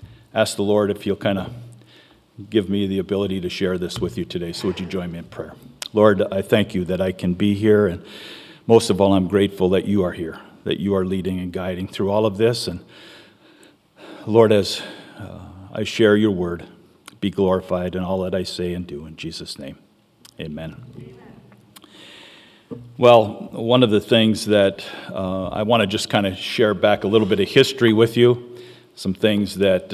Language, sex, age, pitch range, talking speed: English, male, 50-69, 95-110 Hz, 200 wpm